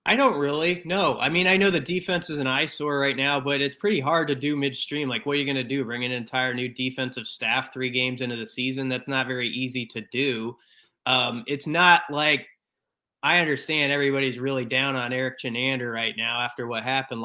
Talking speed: 220 wpm